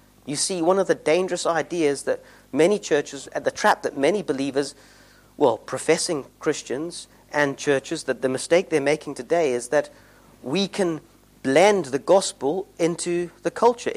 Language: English